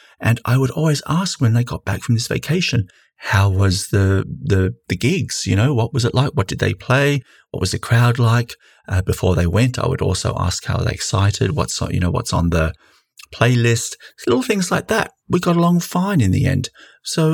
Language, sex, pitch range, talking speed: English, male, 95-130 Hz, 220 wpm